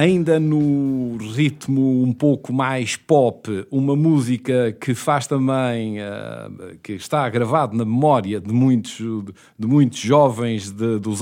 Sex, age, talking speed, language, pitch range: male, 50-69, 120 wpm, English, 115-145 Hz